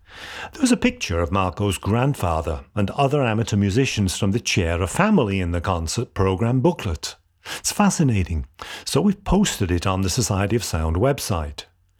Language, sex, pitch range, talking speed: English, male, 90-135 Hz, 155 wpm